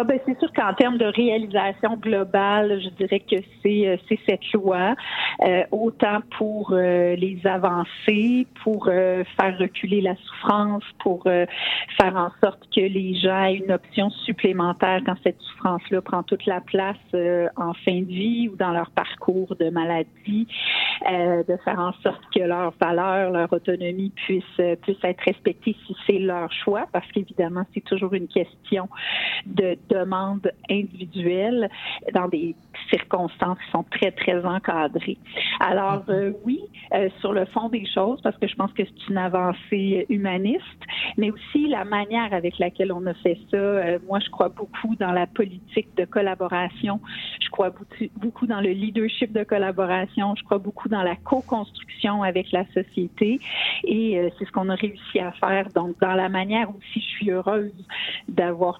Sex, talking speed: female, 170 wpm